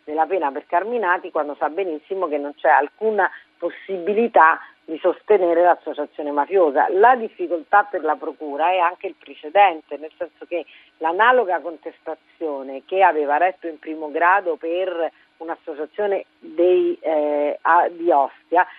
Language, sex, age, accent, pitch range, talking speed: Italian, female, 40-59, native, 145-185 Hz, 135 wpm